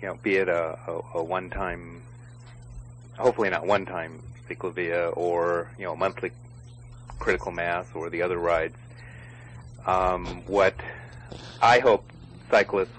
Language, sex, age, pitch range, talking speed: English, male, 40-59, 90-120 Hz, 130 wpm